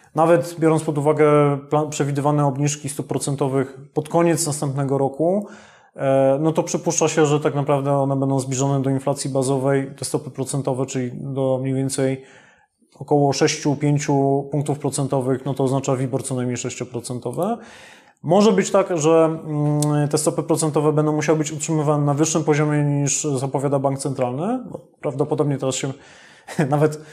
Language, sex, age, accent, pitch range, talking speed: Polish, male, 20-39, native, 140-165 Hz, 145 wpm